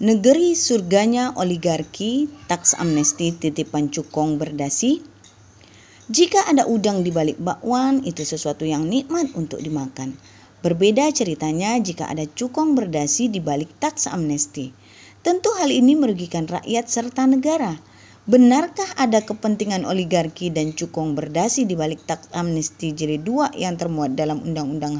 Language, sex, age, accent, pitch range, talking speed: Indonesian, female, 20-39, native, 155-255 Hz, 130 wpm